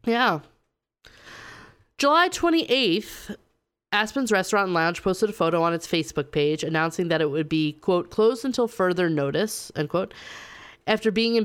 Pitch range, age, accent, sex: 160-190 Hz, 30-49, American, female